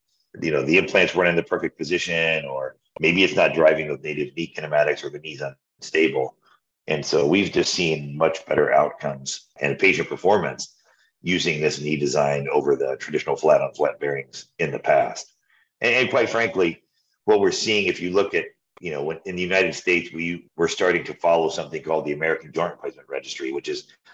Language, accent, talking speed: English, American, 195 wpm